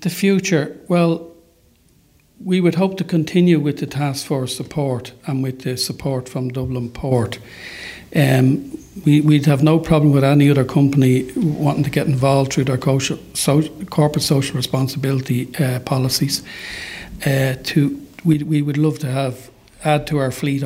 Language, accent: English, Irish